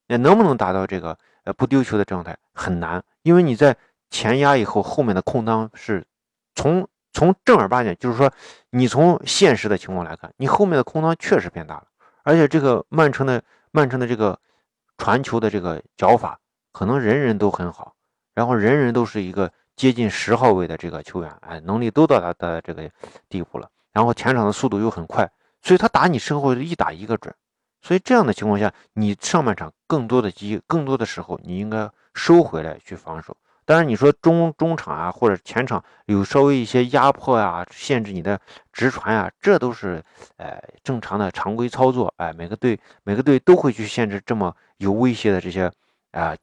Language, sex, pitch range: Chinese, male, 100-145 Hz